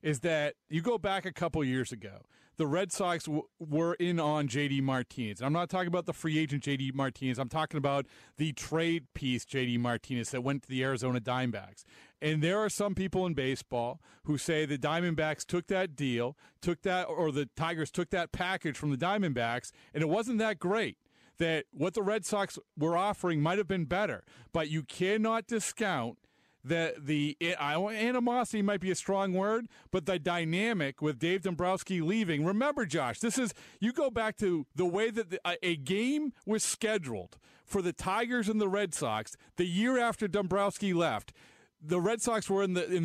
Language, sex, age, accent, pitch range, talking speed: English, male, 40-59, American, 150-205 Hz, 190 wpm